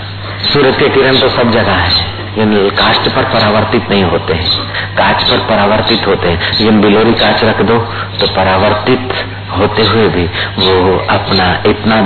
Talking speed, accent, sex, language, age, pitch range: 160 wpm, native, male, Hindi, 50-69, 95-110 Hz